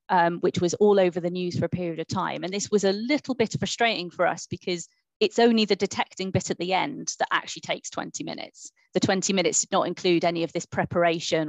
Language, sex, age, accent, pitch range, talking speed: English, female, 20-39, British, 175-205 Hz, 235 wpm